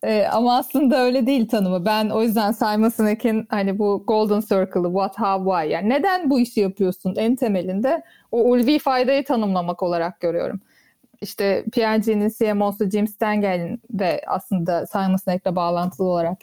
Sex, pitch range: female, 190-240 Hz